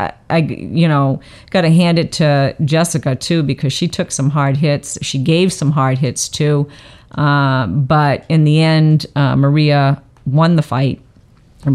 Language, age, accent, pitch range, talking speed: English, 40-59, American, 130-155 Hz, 170 wpm